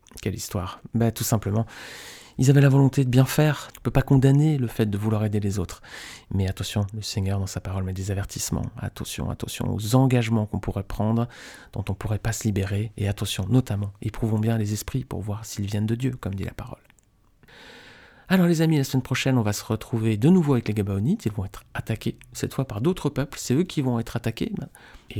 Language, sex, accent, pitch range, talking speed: French, male, French, 100-125 Hz, 230 wpm